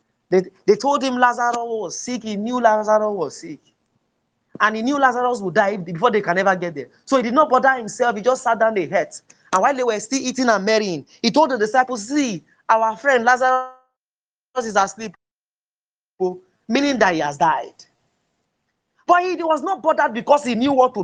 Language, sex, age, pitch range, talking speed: English, male, 30-49, 180-255 Hz, 200 wpm